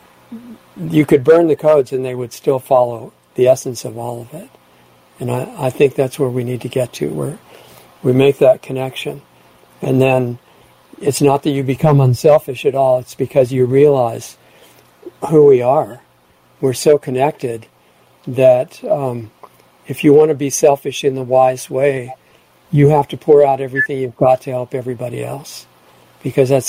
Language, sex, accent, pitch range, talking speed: English, male, American, 125-140 Hz, 175 wpm